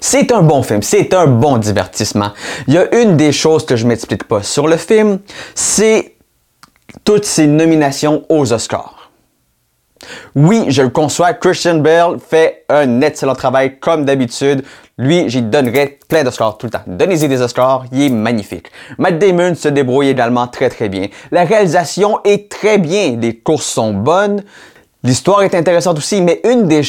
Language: French